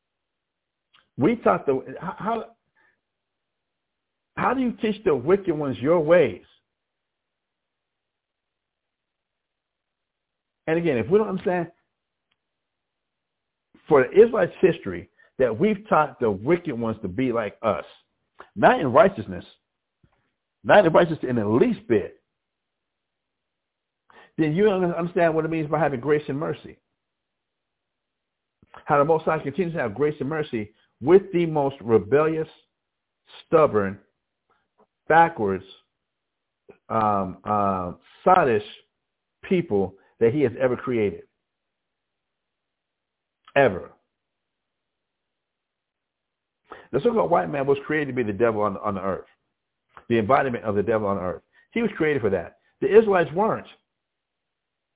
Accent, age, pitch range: American, 60-79, 115-180 Hz